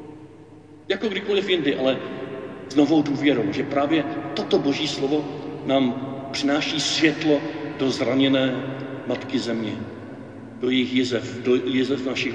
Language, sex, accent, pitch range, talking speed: Czech, male, native, 125-155 Hz, 120 wpm